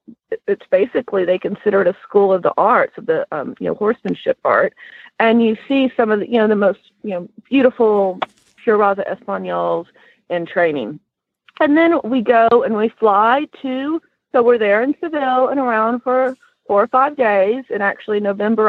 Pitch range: 190-260 Hz